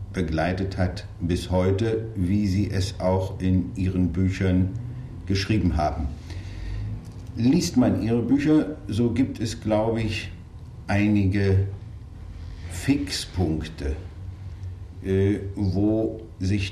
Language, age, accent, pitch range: German, 50-69, German, 90-105 Hz